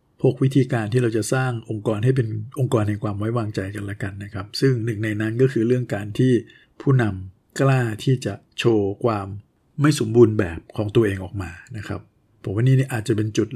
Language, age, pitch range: Thai, 60-79, 105-120 Hz